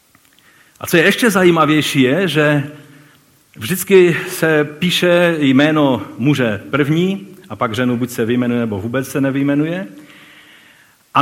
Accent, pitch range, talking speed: native, 120-165 Hz, 130 wpm